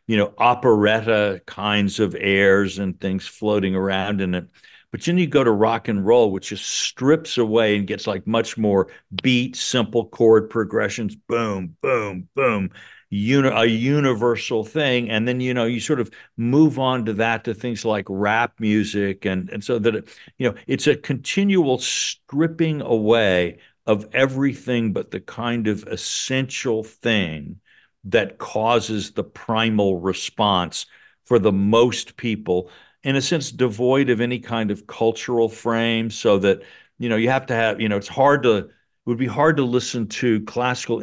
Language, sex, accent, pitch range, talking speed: English, male, American, 105-125 Hz, 170 wpm